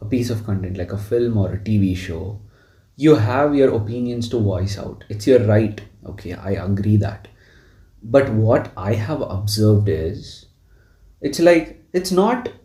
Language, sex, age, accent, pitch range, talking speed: English, male, 30-49, Indian, 100-145 Hz, 165 wpm